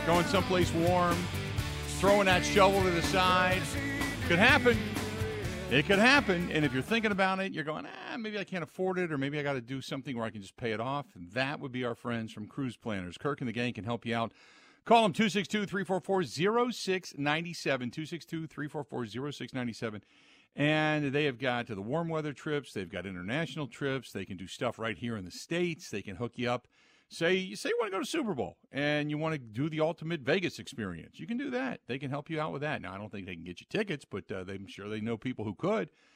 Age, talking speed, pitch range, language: 50-69, 230 wpm, 115-165 Hz, English